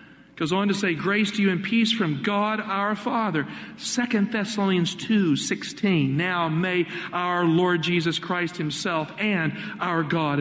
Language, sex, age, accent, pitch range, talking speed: English, male, 50-69, American, 150-205 Hz, 155 wpm